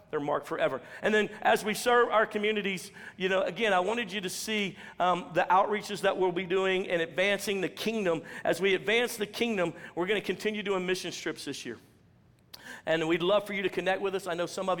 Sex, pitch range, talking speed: male, 170-210 Hz, 225 wpm